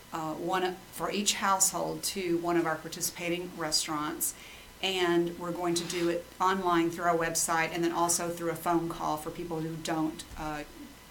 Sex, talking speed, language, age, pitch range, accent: female, 180 wpm, English, 40-59, 160-175 Hz, American